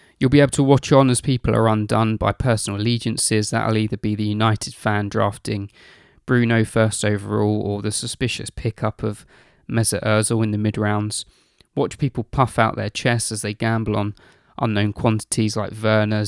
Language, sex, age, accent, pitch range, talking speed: English, male, 20-39, British, 105-115 Hz, 175 wpm